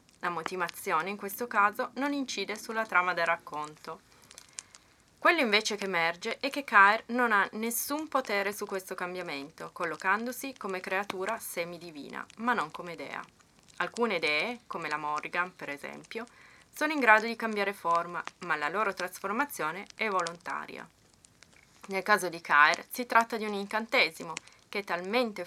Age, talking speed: 20-39, 150 wpm